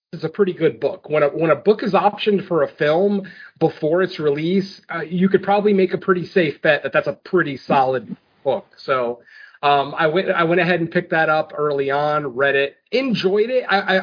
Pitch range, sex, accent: 145-185 Hz, male, American